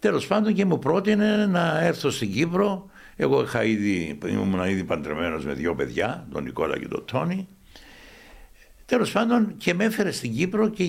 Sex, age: male, 60-79